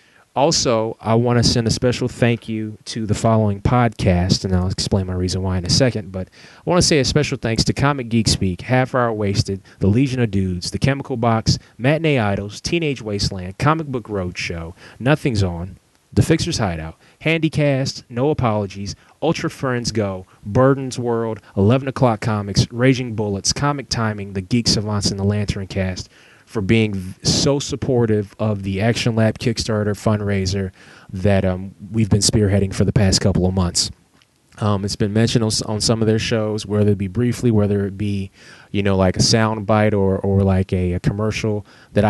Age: 30-49